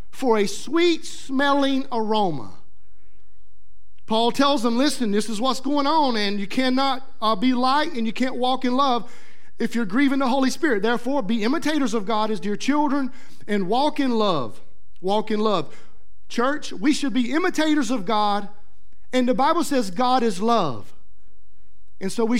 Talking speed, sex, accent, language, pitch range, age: 170 wpm, male, American, English, 225-280 Hz, 40-59